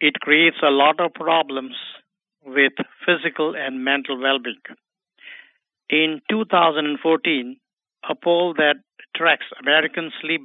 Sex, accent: male, Indian